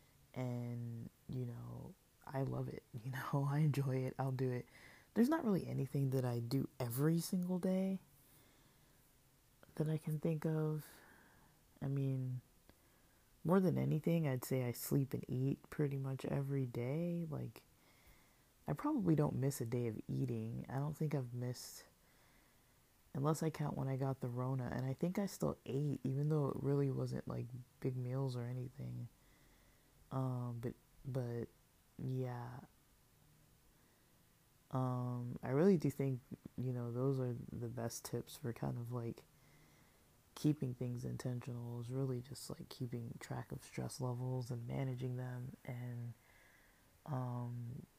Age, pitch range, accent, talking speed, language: 20-39, 120-140 Hz, American, 150 wpm, English